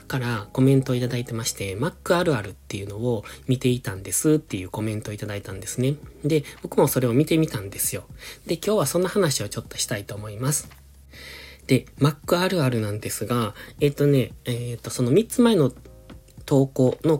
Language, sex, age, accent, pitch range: Japanese, male, 20-39, native, 105-140 Hz